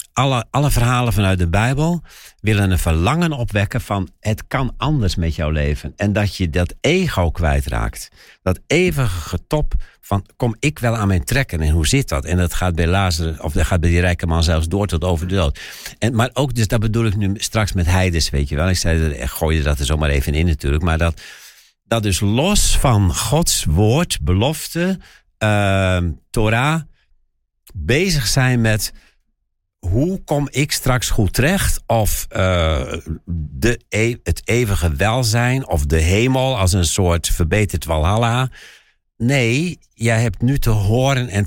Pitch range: 85-120 Hz